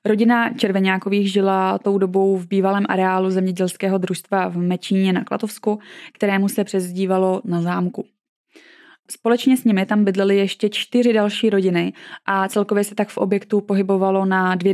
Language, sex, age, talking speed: Czech, female, 20-39, 150 wpm